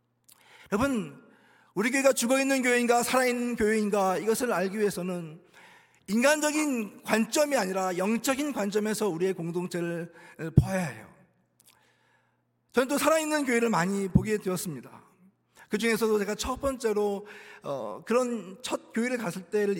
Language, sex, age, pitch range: Korean, male, 40-59, 190-245 Hz